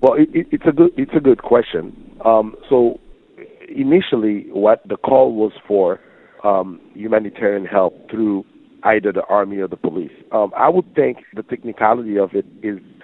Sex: male